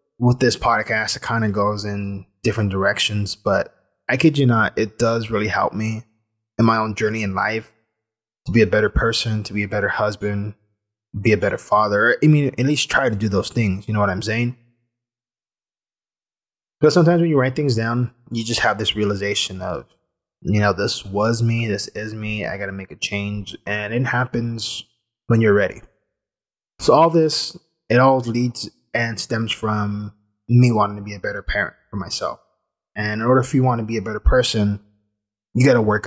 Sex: male